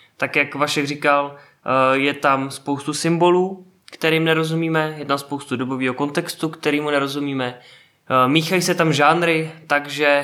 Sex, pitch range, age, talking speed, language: male, 130-150 Hz, 20-39, 130 wpm, Czech